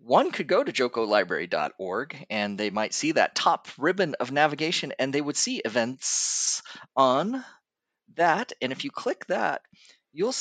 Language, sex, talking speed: English, male, 155 wpm